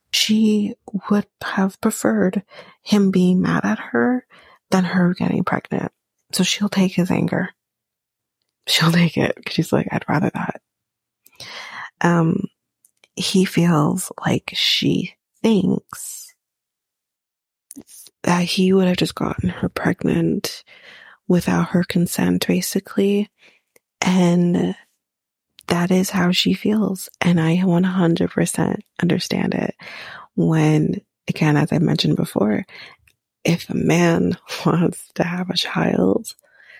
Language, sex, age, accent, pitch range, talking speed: English, female, 30-49, American, 170-205 Hz, 115 wpm